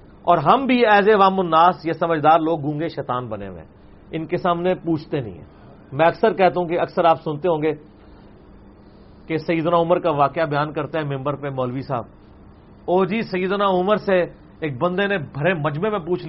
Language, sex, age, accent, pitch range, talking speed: English, male, 40-59, Indian, 140-195 Hz, 200 wpm